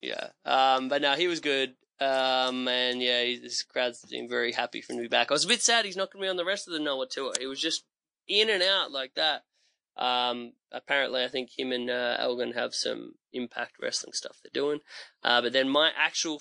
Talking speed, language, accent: 240 wpm, English, Australian